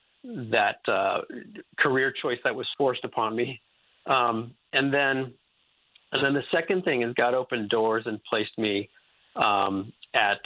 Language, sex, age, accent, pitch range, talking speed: English, male, 50-69, American, 105-125 Hz, 150 wpm